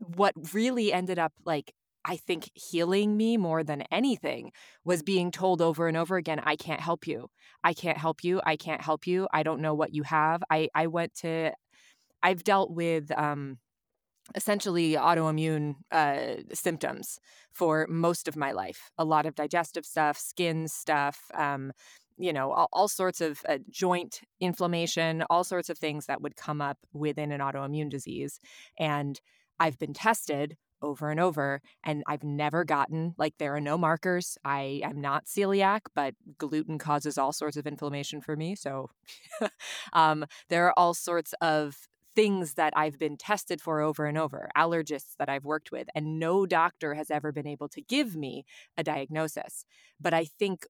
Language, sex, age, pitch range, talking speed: English, female, 20-39, 150-175 Hz, 175 wpm